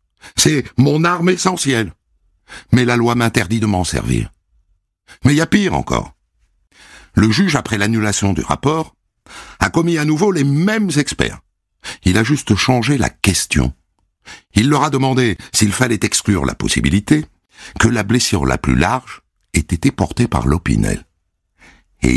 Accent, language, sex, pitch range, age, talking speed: French, French, male, 75-120 Hz, 60-79, 155 wpm